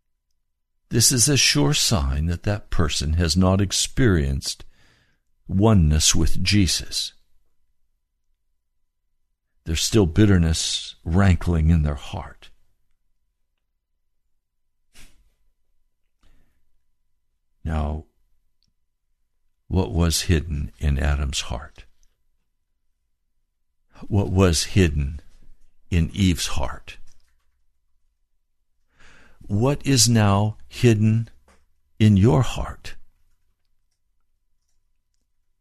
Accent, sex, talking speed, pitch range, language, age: American, male, 70 wpm, 65-100 Hz, English, 60-79